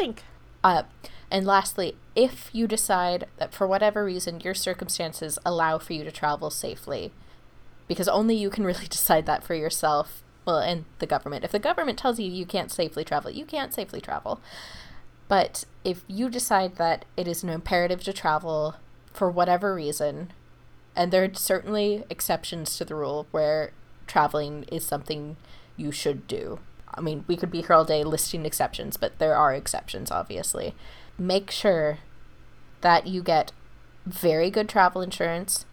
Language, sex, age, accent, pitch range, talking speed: English, female, 20-39, American, 155-195 Hz, 165 wpm